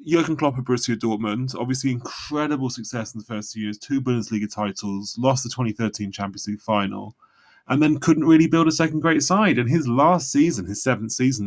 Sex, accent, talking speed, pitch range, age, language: male, British, 200 wpm, 115-145 Hz, 20-39, English